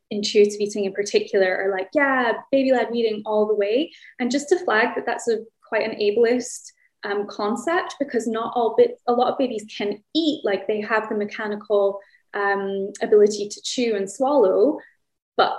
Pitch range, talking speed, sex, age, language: 205-260 Hz, 175 wpm, female, 10-29, English